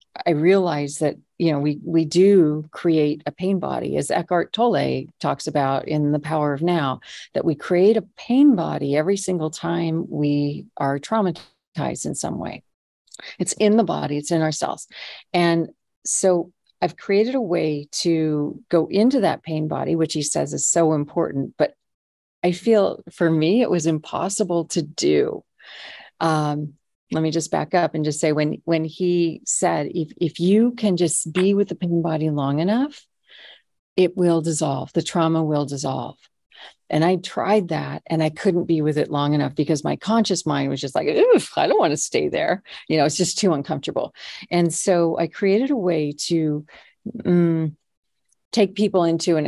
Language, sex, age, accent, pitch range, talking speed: English, female, 40-59, American, 150-180 Hz, 180 wpm